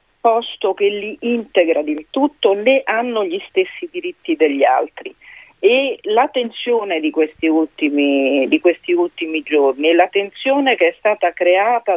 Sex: female